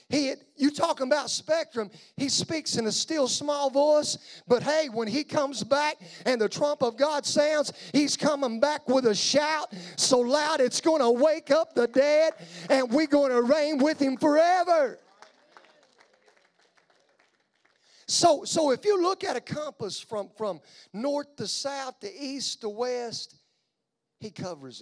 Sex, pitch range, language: male, 185-285 Hz, English